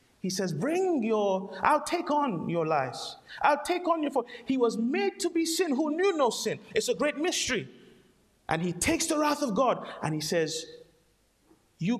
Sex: male